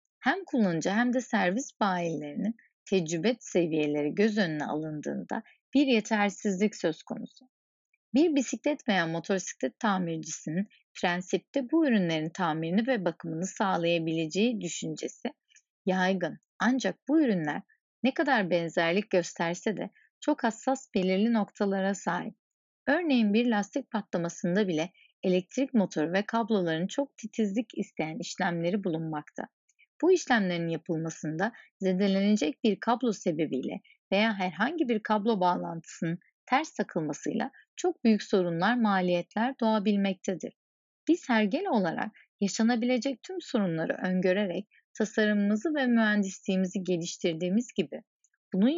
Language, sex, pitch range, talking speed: Turkish, female, 180-245 Hz, 110 wpm